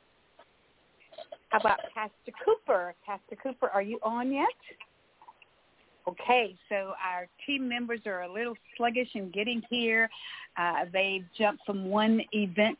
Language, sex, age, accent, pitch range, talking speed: English, female, 50-69, American, 190-230 Hz, 130 wpm